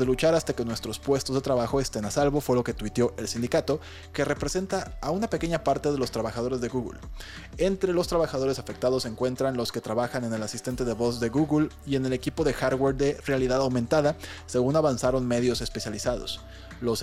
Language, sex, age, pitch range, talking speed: Spanish, male, 20-39, 120-145 Hz, 205 wpm